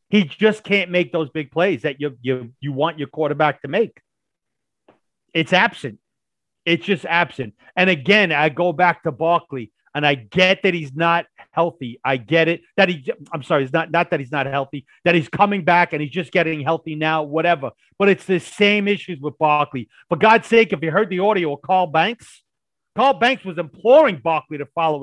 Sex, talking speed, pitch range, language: male, 205 wpm, 160-255 Hz, English